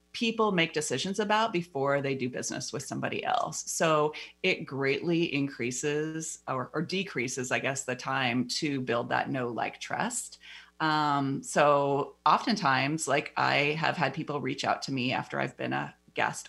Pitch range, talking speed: 135-160 Hz, 165 wpm